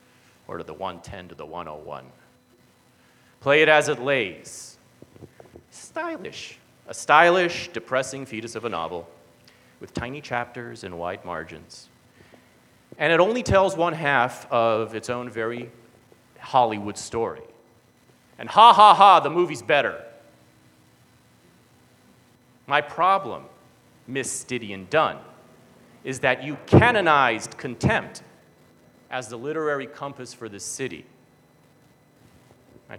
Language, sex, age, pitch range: English, male, 30-49, 95-140 Hz